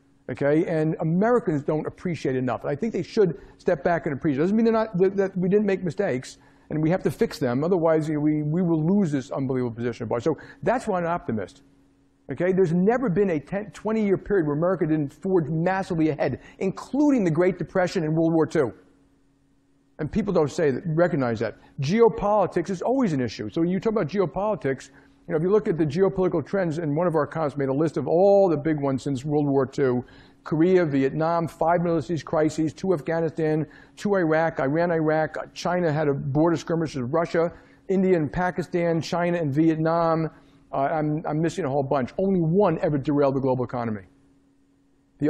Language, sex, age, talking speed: English, male, 50-69, 200 wpm